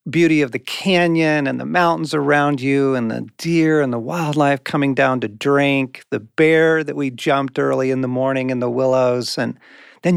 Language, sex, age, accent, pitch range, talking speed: English, male, 40-59, American, 125-165 Hz, 195 wpm